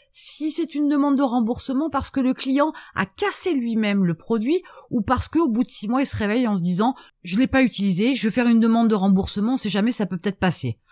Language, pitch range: French, 190-265 Hz